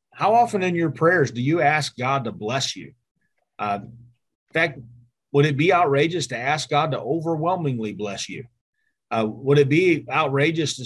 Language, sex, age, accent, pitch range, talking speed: English, male, 30-49, American, 115-140 Hz, 175 wpm